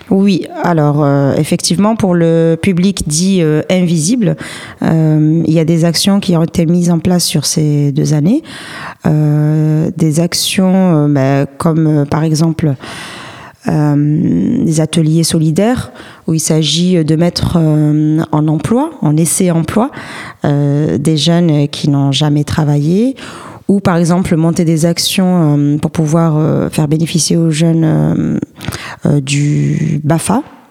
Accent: French